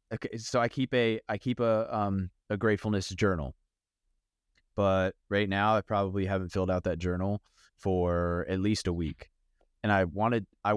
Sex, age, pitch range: male, 20-39, 90-110 Hz